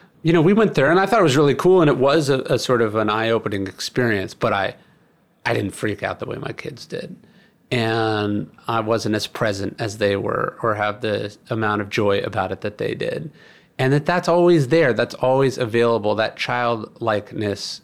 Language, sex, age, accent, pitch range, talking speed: English, male, 30-49, American, 105-140 Hz, 210 wpm